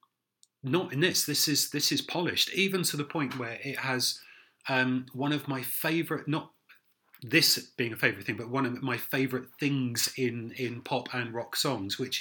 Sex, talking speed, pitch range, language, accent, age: male, 190 wpm, 120-140 Hz, English, British, 30-49